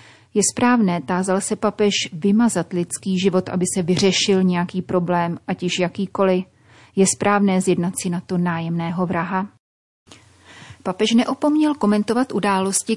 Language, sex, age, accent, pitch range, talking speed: Czech, female, 30-49, native, 180-205 Hz, 130 wpm